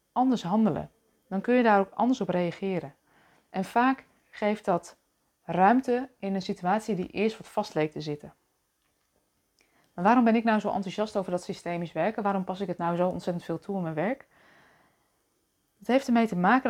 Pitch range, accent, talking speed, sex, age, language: 180-220 Hz, Dutch, 190 wpm, female, 20-39, Dutch